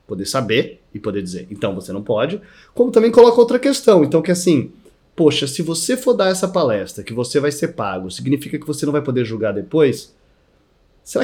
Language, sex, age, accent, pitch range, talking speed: Portuguese, male, 30-49, Brazilian, 120-185 Hz, 205 wpm